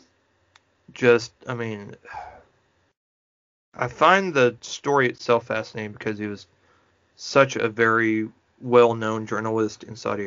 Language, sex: English, male